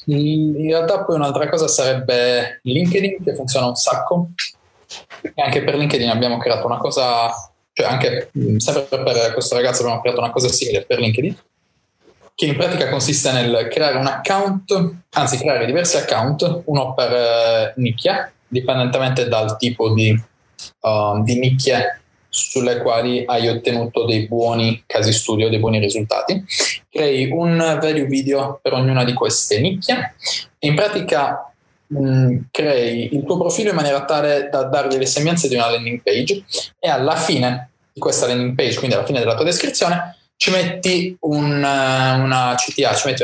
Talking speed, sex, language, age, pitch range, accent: 155 wpm, male, Italian, 20-39, 120-165 Hz, native